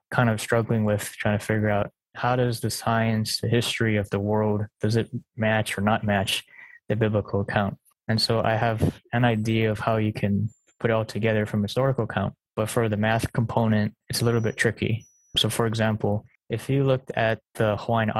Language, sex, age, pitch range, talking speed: English, male, 20-39, 105-115 Hz, 205 wpm